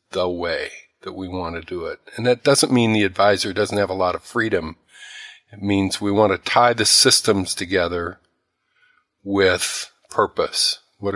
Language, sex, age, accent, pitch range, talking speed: English, male, 50-69, American, 90-100 Hz, 170 wpm